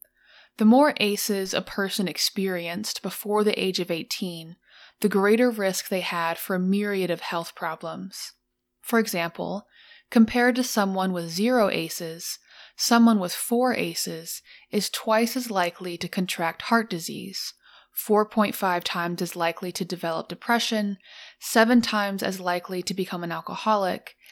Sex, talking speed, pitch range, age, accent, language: female, 140 wpm, 180-220 Hz, 20-39, American, English